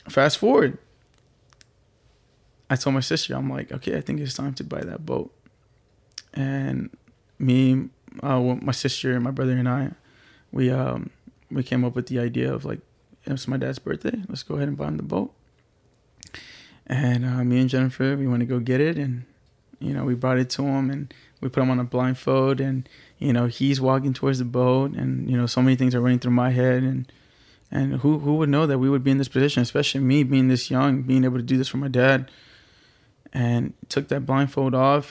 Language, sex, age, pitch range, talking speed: English, male, 20-39, 125-135 Hz, 215 wpm